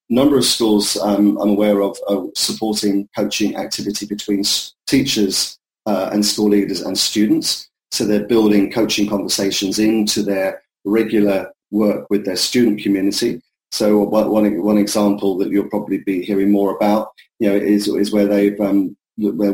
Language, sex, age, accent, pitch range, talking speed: English, male, 30-49, British, 100-110 Hz, 155 wpm